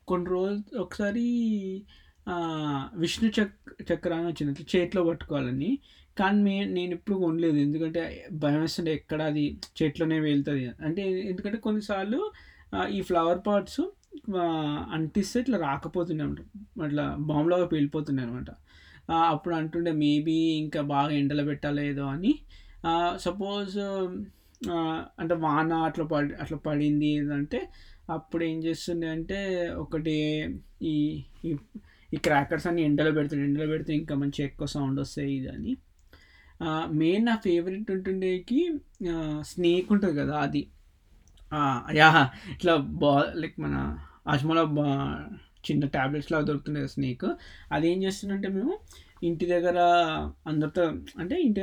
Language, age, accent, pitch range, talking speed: Telugu, 20-39, native, 145-185 Hz, 110 wpm